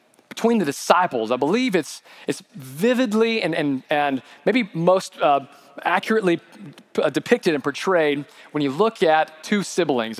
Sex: male